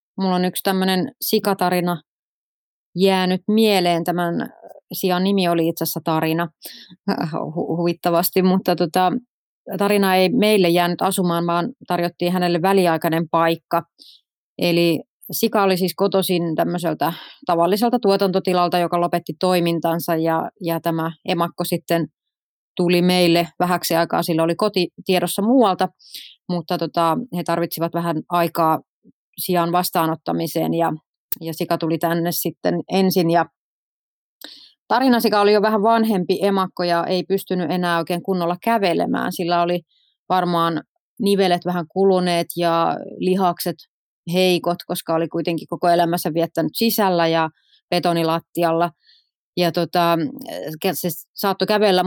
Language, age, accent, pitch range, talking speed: Finnish, 30-49, native, 170-190 Hz, 120 wpm